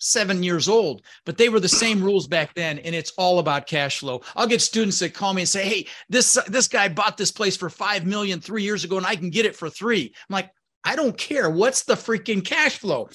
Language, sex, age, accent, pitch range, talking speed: English, male, 40-59, American, 145-200 Hz, 255 wpm